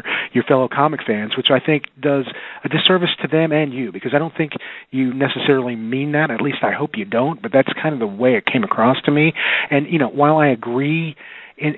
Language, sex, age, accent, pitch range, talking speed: English, male, 40-59, American, 125-155 Hz, 235 wpm